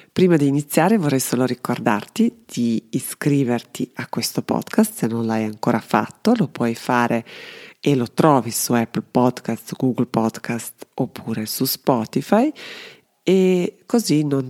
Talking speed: 140 wpm